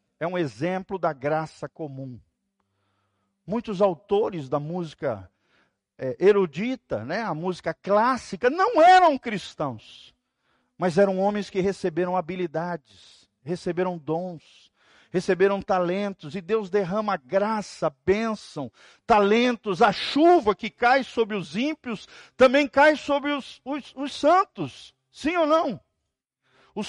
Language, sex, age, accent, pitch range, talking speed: Portuguese, male, 50-69, Brazilian, 140-235 Hz, 115 wpm